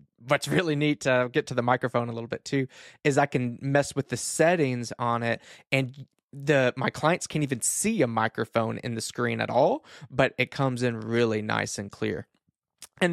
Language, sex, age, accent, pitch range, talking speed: English, male, 20-39, American, 115-150 Hz, 200 wpm